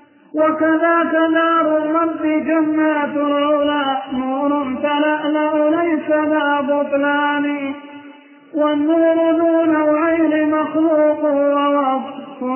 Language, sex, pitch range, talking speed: Arabic, male, 285-310 Hz, 75 wpm